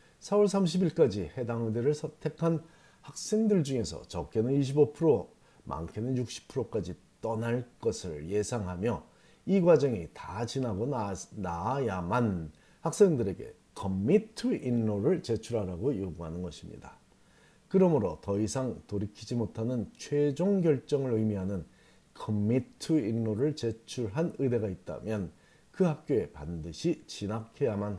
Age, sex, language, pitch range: 40-59, male, Korean, 105-150 Hz